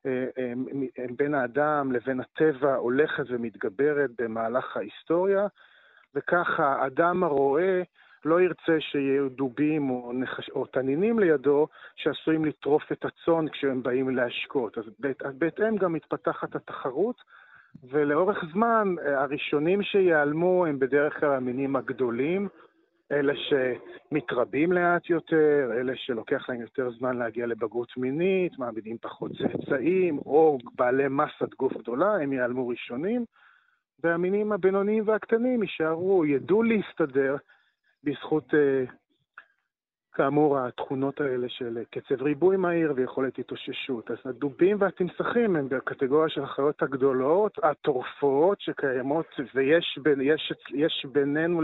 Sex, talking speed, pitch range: male, 115 wpm, 135-175 Hz